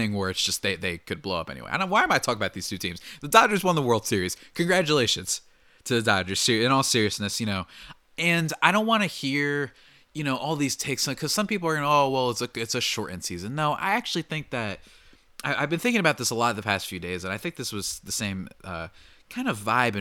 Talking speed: 260 wpm